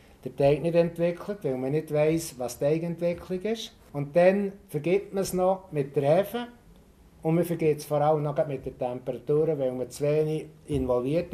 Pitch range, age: 130-165 Hz, 60-79